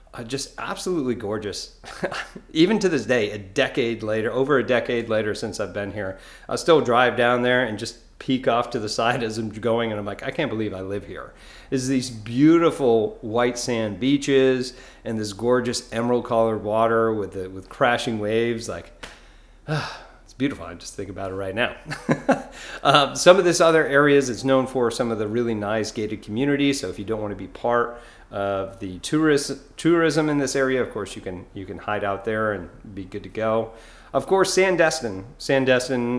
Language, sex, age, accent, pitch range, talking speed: English, male, 40-59, American, 105-130 Hz, 195 wpm